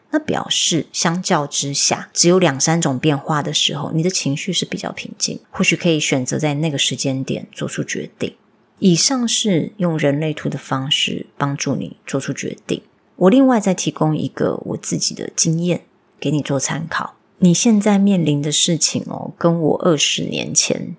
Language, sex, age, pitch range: Chinese, female, 30-49, 145-185 Hz